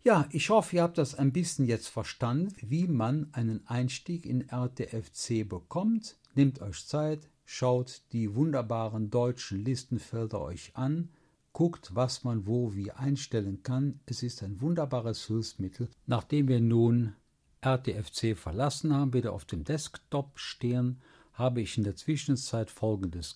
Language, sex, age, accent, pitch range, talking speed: German, male, 50-69, German, 110-140 Hz, 145 wpm